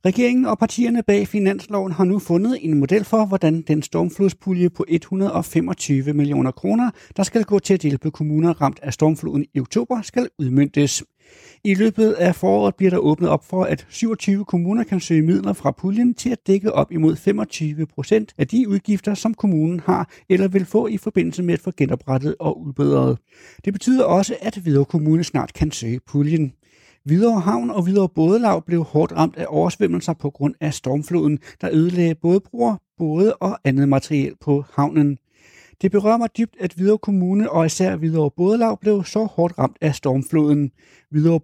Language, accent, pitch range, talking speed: Danish, native, 145-205 Hz, 180 wpm